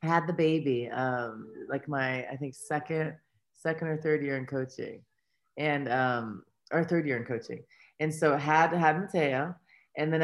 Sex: female